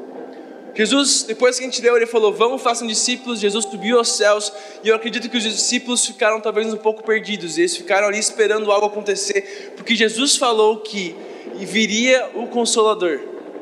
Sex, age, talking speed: male, 10-29, 175 wpm